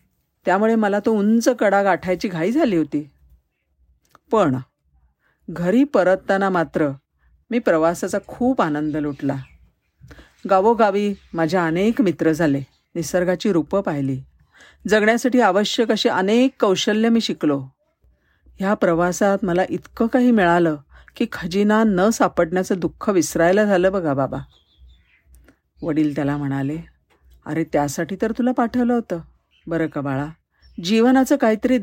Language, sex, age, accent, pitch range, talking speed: Marathi, female, 50-69, native, 150-215 Hz, 120 wpm